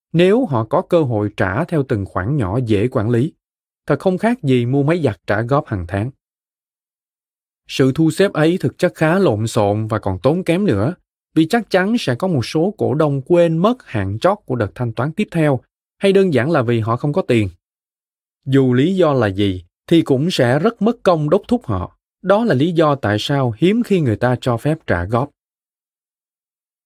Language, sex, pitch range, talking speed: Vietnamese, male, 115-170 Hz, 210 wpm